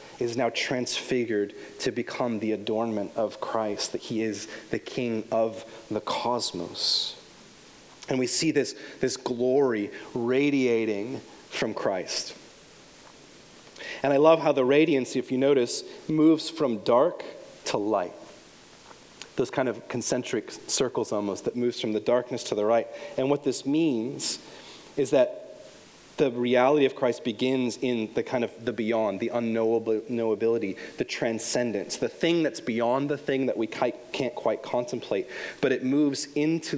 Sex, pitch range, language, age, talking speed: male, 110-135 Hz, English, 30-49, 145 wpm